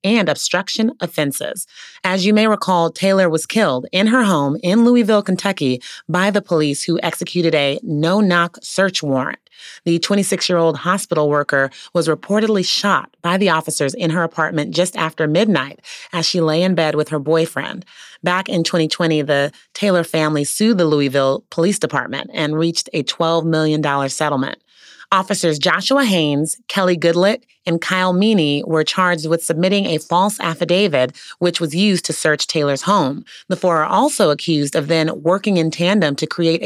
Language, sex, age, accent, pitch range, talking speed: English, female, 30-49, American, 150-185 Hz, 165 wpm